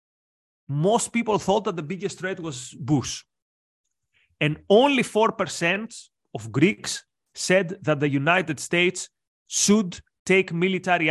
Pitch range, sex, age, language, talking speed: 140-185 Hz, male, 30-49, English, 120 wpm